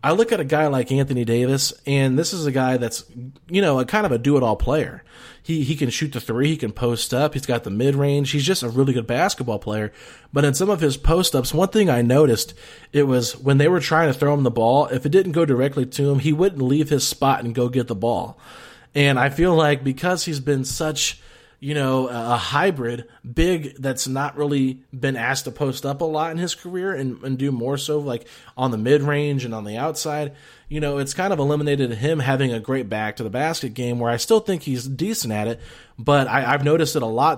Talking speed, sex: 240 wpm, male